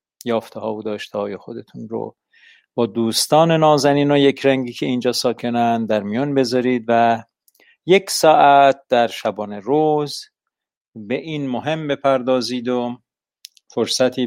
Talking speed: 125 wpm